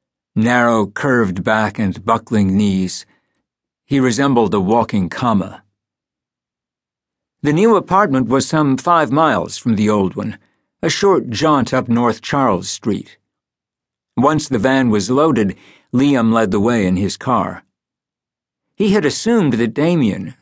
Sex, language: male, English